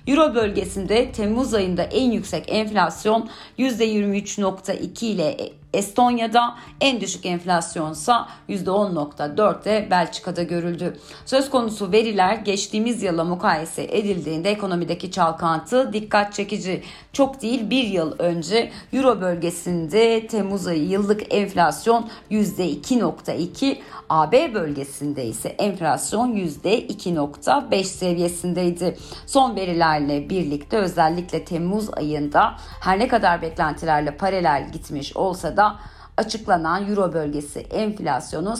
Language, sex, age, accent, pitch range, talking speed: Turkish, female, 40-59, native, 165-220 Hz, 100 wpm